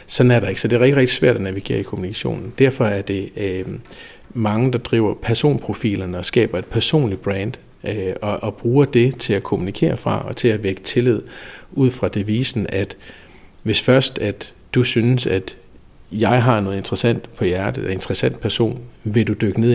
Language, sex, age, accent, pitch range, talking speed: Danish, male, 50-69, native, 100-125 Hz, 195 wpm